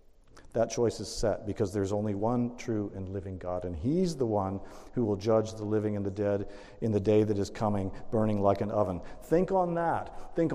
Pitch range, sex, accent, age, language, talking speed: 95-120 Hz, male, American, 50-69, English, 215 wpm